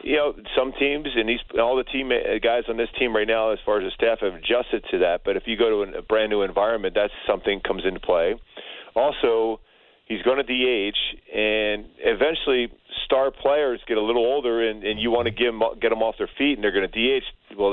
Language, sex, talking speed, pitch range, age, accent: English, male, 230 wpm, 110-150 Hz, 40-59, American